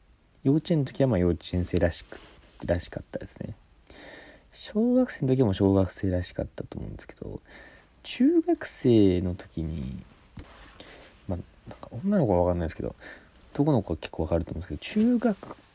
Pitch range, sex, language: 85-130 Hz, male, Japanese